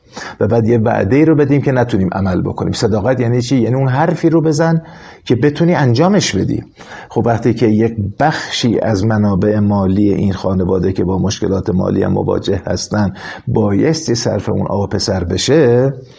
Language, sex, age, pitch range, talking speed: Persian, male, 50-69, 105-140 Hz, 165 wpm